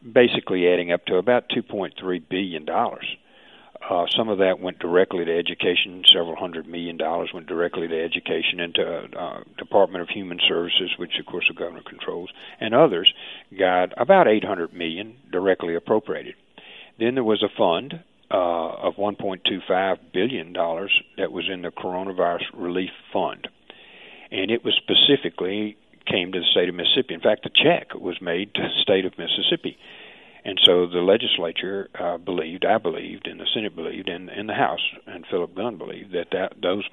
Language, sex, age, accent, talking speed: English, male, 50-69, American, 170 wpm